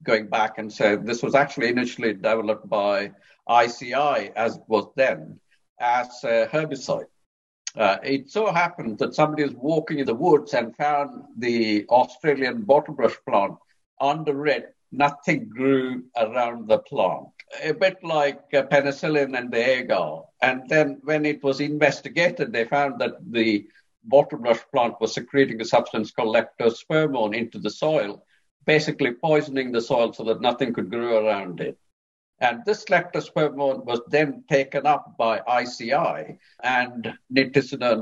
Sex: male